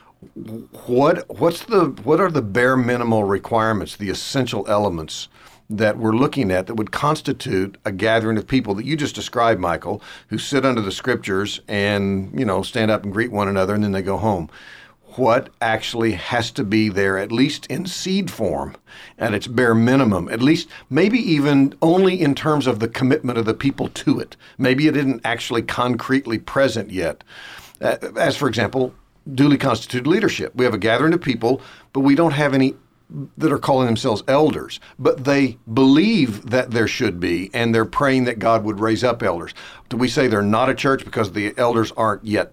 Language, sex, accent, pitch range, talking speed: English, male, American, 110-135 Hz, 190 wpm